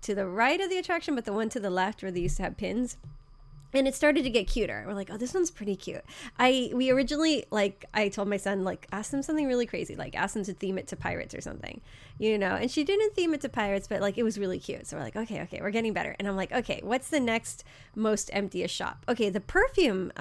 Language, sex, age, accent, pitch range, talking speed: English, female, 20-39, American, 195-275 Hz, 270 wpm